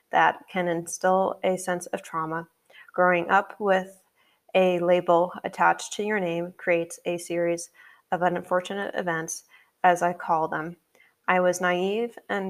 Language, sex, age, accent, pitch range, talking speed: English, female, 20-39, American, 170-185 Hz, 145 wpm